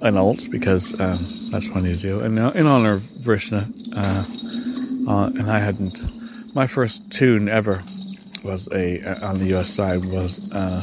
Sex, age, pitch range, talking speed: male, 30-49, 95-155 Hz, 185 wpm